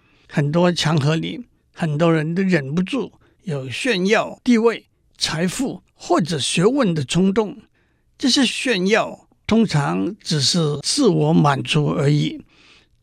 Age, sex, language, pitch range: 60-79, male, Chinese, 155-210 Hz